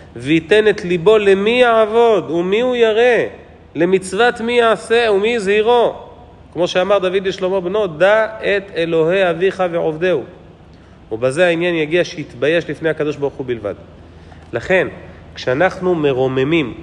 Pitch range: 135-190 Hz